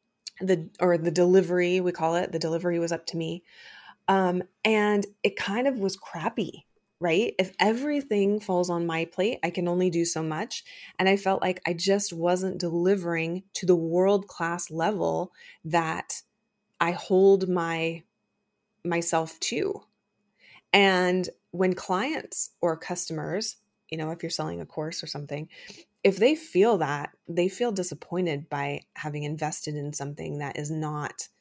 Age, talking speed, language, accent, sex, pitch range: 20-39, 155 wpm, English, American, female, 165-205 Hz